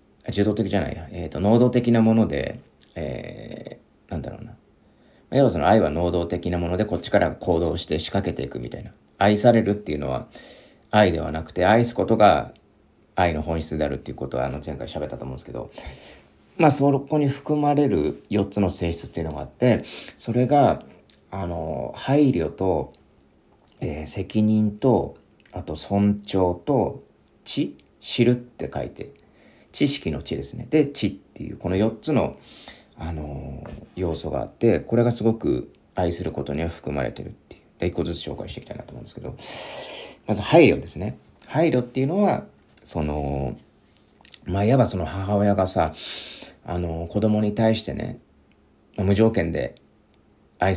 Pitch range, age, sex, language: 80-110 Hz, 40-59, male, Japanese